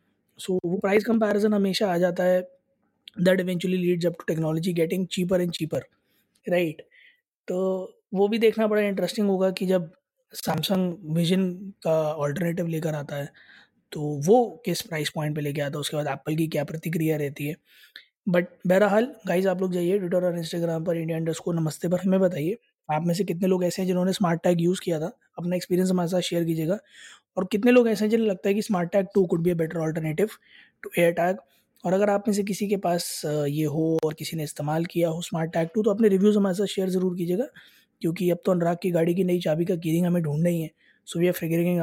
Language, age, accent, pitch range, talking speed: Hindi, 20-39, native, 160-190 Hz, 215 wpm